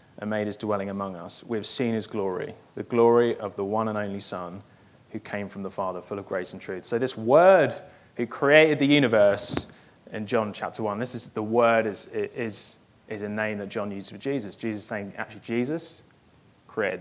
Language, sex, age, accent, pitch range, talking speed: English, male, 20-39, British, 105-135 Hz, 210 wpm